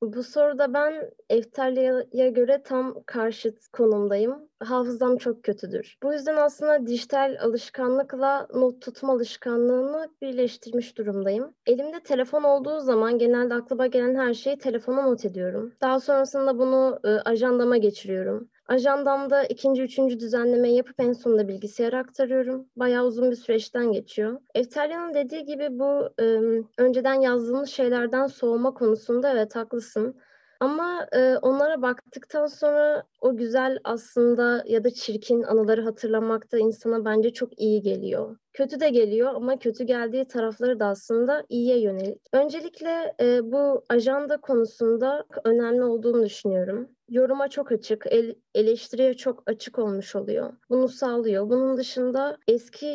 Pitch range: 225-265 Hz